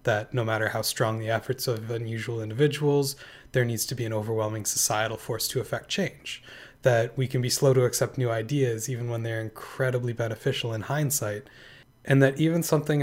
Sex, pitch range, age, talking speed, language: male, 115-135 Hz, 20-39, 190 wpm, English